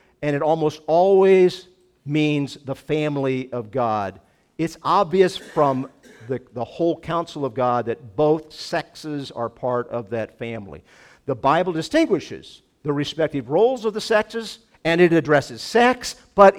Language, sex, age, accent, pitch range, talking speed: English, male, 50-69, American, 115-170 Hz, 145 wpm